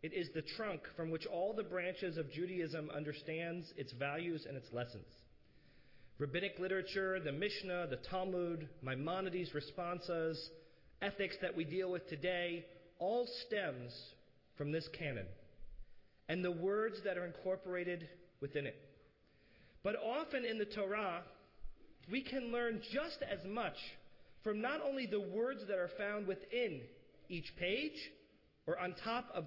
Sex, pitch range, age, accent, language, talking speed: male, 165-225 Hz, 40-59, American, English, 145 wpm